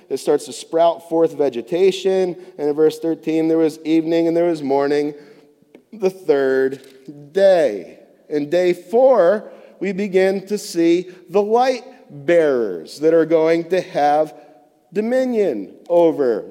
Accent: American